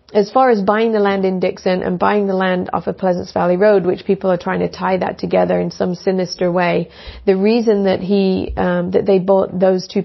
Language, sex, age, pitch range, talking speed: English, female, 40-59, 180-210 Hz, 235 wpm